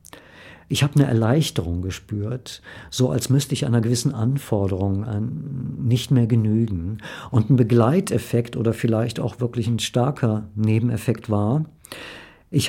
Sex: male